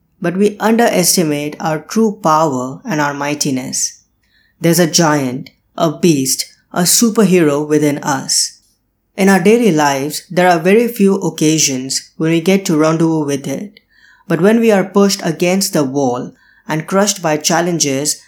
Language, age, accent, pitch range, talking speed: English, 20-39, Indian, 155-195 Hz, 150 wpm